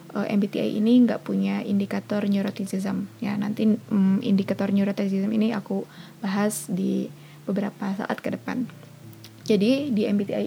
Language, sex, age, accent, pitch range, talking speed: Indonesian, female, 20-39, native, 200-220 Hz, 125 wpm